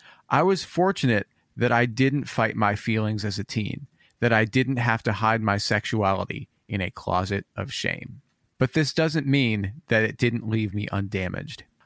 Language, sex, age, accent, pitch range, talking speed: English, male, 30-49, American, 105-125 Hz, 175 wpm